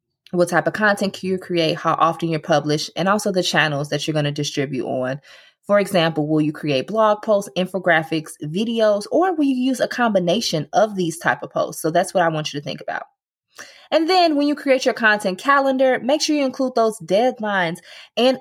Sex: female